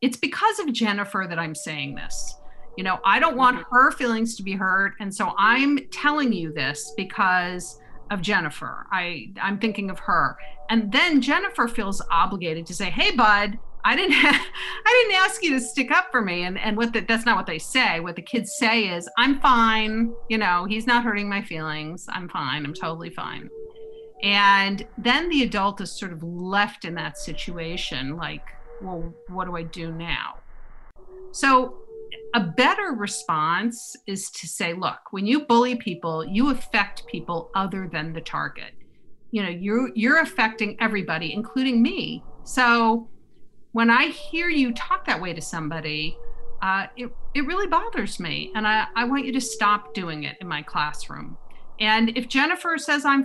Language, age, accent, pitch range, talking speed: English, 50-69, American, 180-260 Hz, 175 wpm